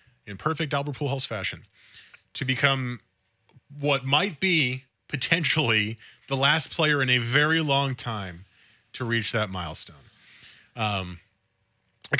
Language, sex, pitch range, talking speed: English, male, 110-145 Hz, 125 wpm